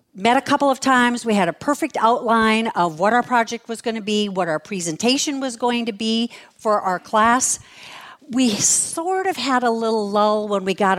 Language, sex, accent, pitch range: English, female, American, 200-260 Hz